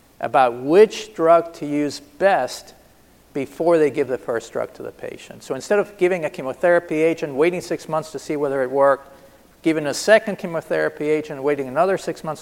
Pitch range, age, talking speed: 140-185 Hz, 50-69, 190 wpm